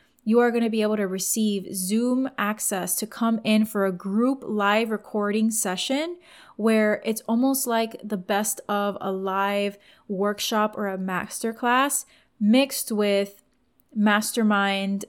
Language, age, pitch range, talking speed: English, 20-39, 190-215 Hz, 140 wpm